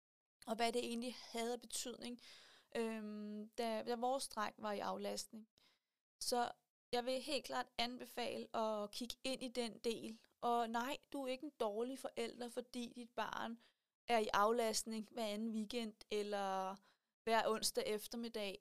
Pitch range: 220-255 Hz